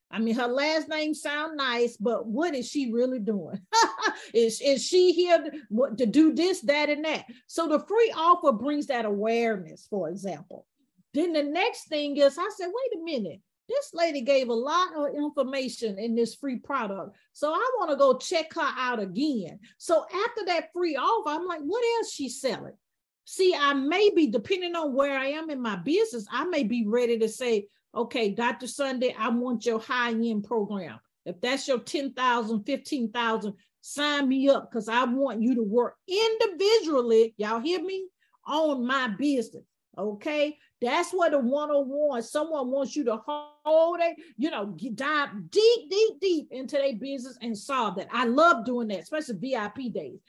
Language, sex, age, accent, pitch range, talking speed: English, female, 40-59, American, 240-330 Hz, 180 wpm